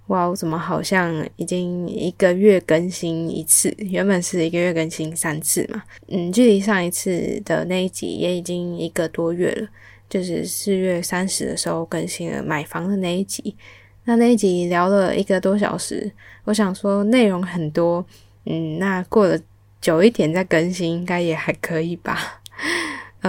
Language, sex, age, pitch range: Chinese, female, 10-29, 165-195 Hz